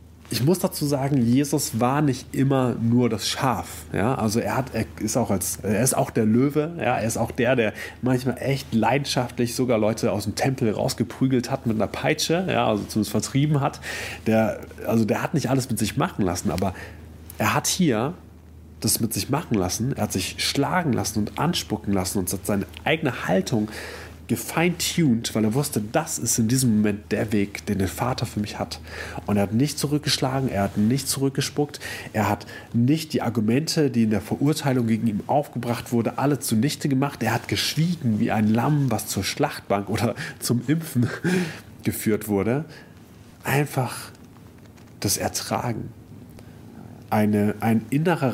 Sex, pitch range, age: male, 105-135 Hz, 30-49